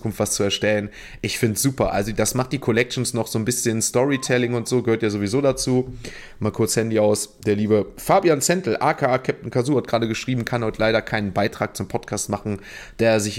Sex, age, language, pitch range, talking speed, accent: male, 30-49, German, 105-125 Hz, 210 wpm, German